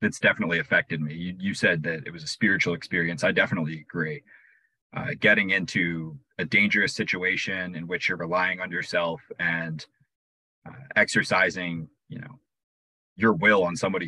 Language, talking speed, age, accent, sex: English, 160 wpm, 30-49, American, male